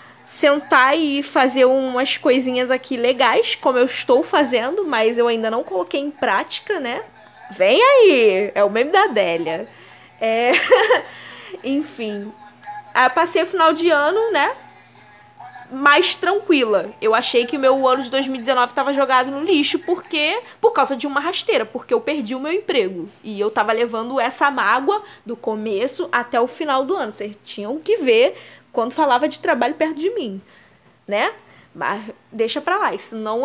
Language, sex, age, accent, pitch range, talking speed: Portuguese, female, 10-29, Brazilian, 230-340 Hz, 165 wpm